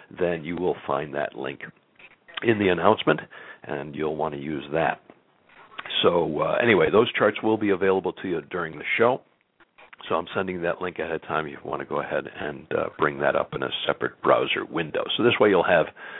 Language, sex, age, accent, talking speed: English, male, 60-79, American, 210 wpm